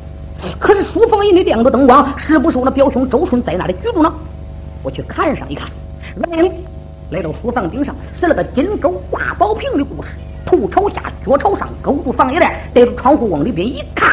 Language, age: Chinese, 50-69